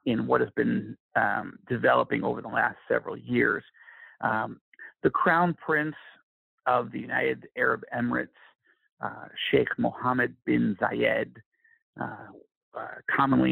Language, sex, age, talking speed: English, male, 50-69, 125 wpm